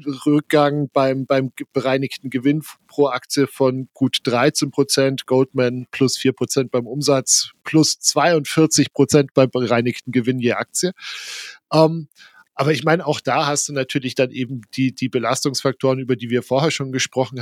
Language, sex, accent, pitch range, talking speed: German, male, German, 125-145 Hz, 155 wpm